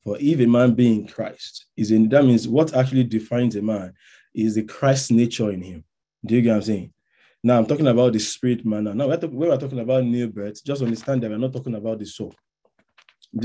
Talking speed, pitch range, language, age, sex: 240 wpm, 110-125 Hz, English, 20-39, male